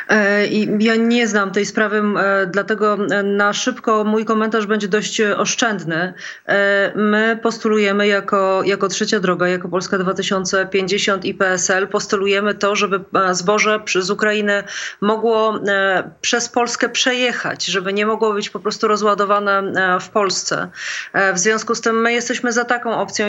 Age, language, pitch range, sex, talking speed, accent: 30-49, English, 200-230 Hz, female, 135 wpm, Polish